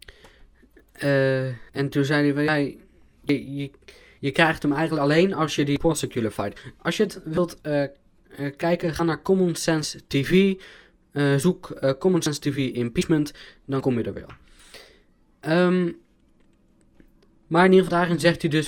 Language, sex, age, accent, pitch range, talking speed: Dutch, male, 20-39, Dutch, 125-165 Hz, 160 wpm